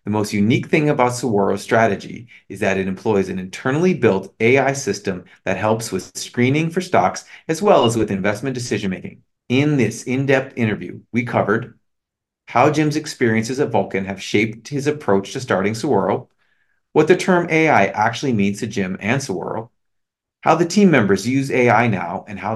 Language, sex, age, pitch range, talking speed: English, male, 40-59, 100-130 Hz, 175 wpm